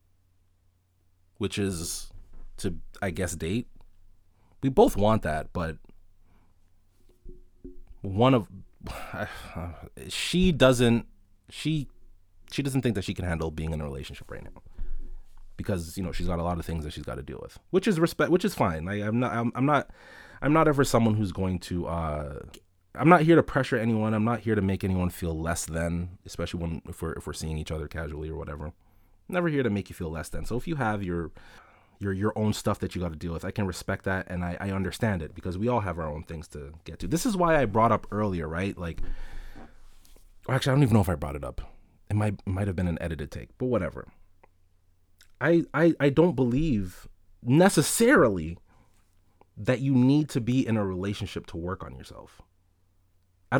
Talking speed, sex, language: 205 wpm, male, English